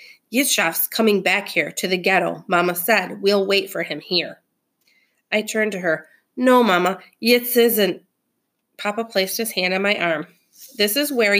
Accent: American